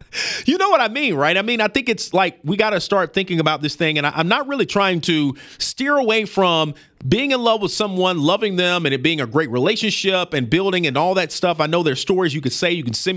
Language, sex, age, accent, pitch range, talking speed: English, male, 40-59, American, 155-220 Hz, 270 wpm